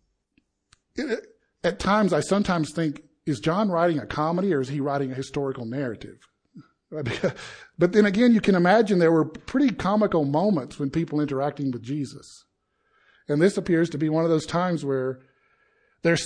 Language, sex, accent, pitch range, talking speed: English, male, American, 140-180 Hz, 160 wpm